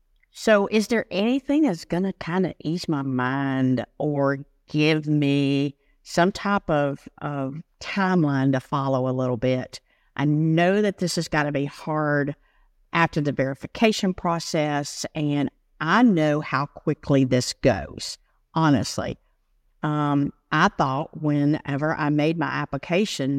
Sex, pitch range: female, 140-180 Hz